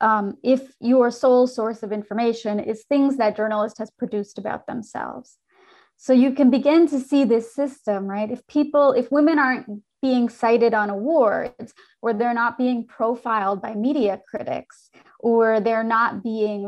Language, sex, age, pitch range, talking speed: English, female, 30-49, 220-270 Hz, 160 wpm